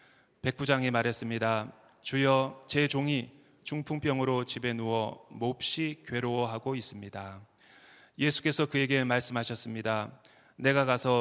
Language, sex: Korean, male